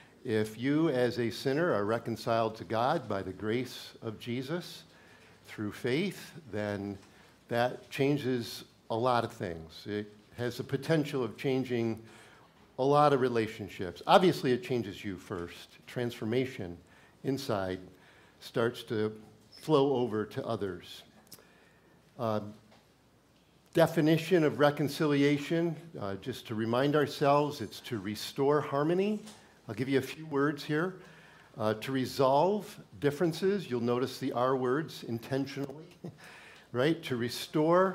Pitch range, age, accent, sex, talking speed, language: 110-155 Hz, 50-69, American, male, 125 wpm, English